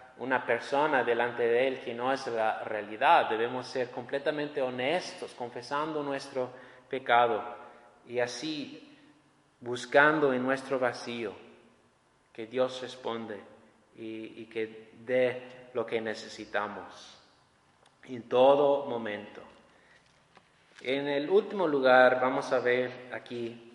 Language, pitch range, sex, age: English, 120-155 Hz, male, 30-49